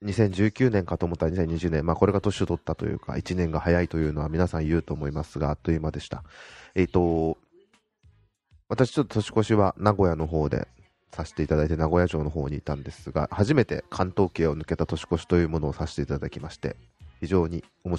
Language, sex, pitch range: Japanese, male, 80-100 Hz